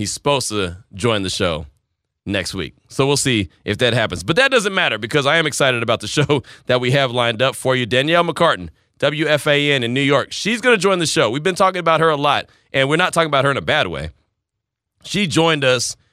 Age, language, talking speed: 30-49, English, 240 wpm